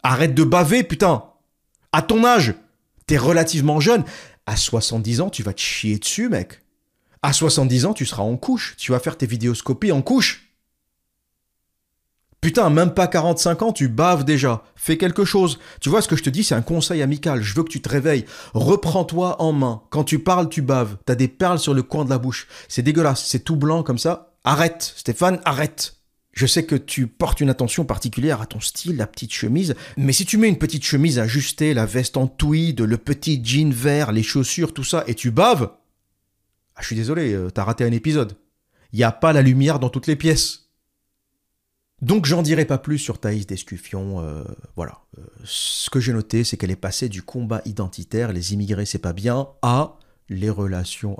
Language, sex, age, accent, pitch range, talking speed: French, male, 40-59, French, 110-155 Hz, 205 wpm